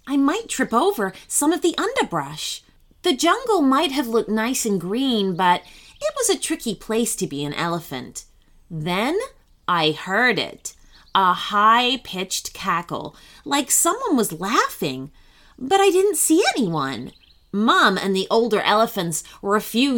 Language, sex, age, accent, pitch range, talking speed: English, female, 30-49, American, 190-315 Hz, 150 wpm